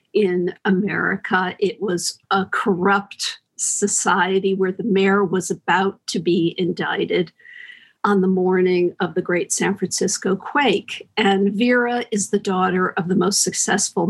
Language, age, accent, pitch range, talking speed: English, 50-69, American, 185-220 Hz, 140 wpm